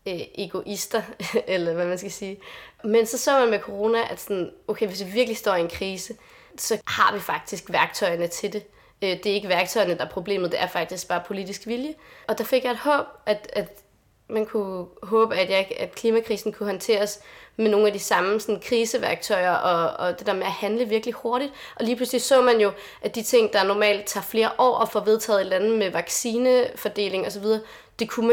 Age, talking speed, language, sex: 20-39, 210 wpm, Danish, female